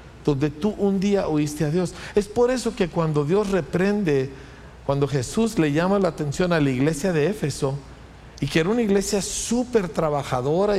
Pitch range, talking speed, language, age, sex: 135-190 Hz, 180 wpm, Spanish, 50-69, male